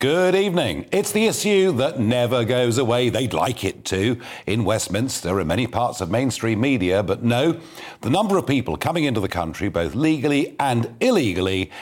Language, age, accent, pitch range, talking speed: English, 50-69, British, 95-145 Hz, 185 wpm